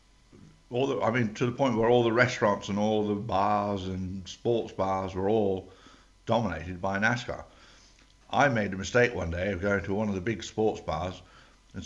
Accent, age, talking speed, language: British, 60-79, 195 wpm, English